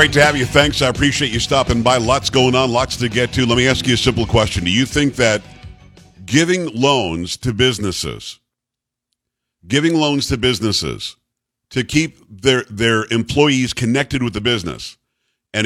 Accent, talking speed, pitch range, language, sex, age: American, 175 wpm, 115-135 Hz, English, male, 50-69